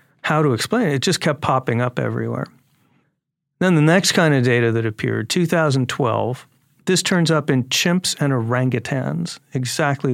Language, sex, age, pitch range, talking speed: English, male, 40-59, 120-150 Hz, 160 wpm